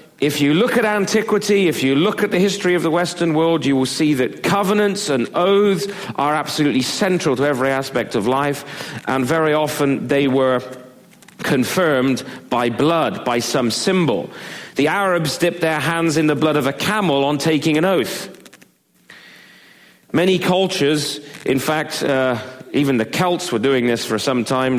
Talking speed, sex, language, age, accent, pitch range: 170 wpm, male, English, 40-59, British, 130-170 Hz